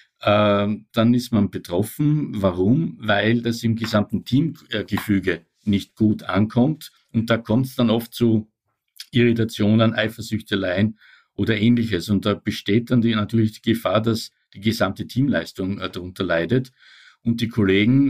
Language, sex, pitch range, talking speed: German, male, 100-115 Hz, 135 wpm